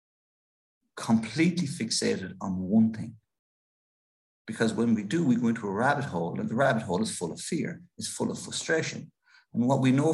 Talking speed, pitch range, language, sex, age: 185 wpm, 110-165 Hz, English, male, 50-69